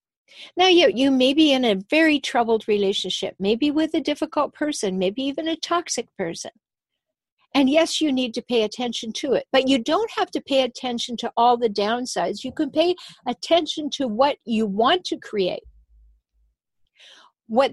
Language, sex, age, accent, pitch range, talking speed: English, female, 60-79, American, 225-320 Hz, 175 wpm